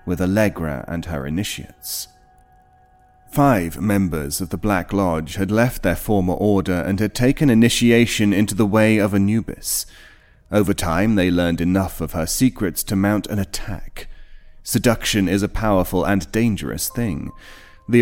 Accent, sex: British, male